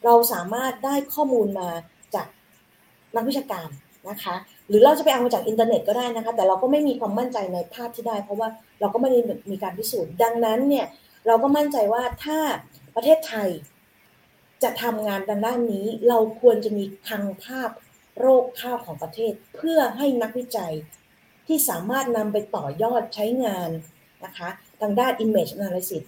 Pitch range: 205-250 Hz